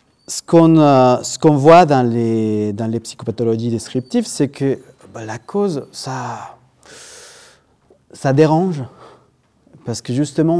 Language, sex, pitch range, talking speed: French, male, 115-165 Hz, 125 wpm